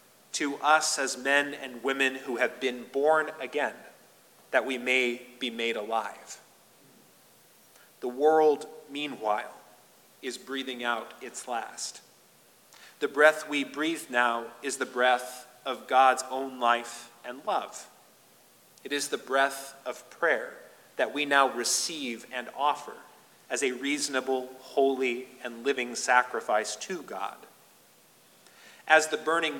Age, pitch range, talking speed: 30-49, 125-145 Hz, 130 wpm